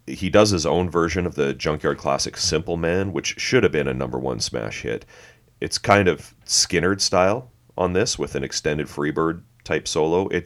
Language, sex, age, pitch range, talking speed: English, male, 30-49, 75-95 Hz, 195 wpm